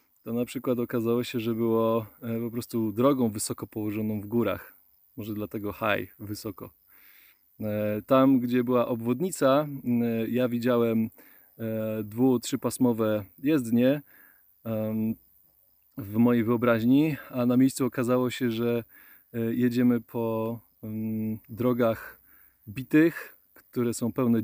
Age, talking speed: 20-39, 105 wpm